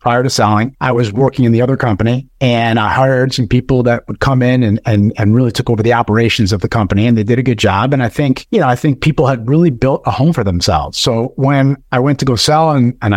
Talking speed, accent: 275 wpm, American